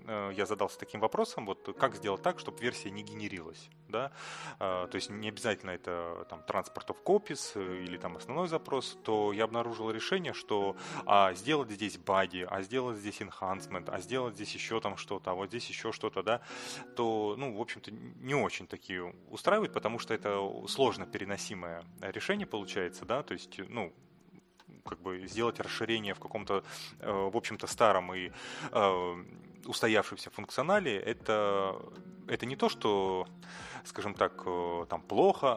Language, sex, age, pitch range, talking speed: Russian, male, 30-49, 95-115 Hz, 155 wpm